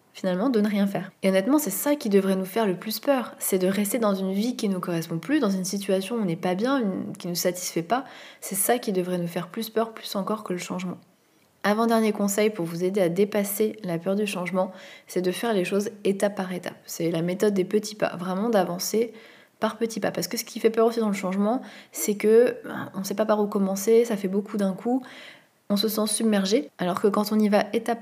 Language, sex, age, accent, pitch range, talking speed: French, female, 20-39, French, 185-220 Hz, 255 wpm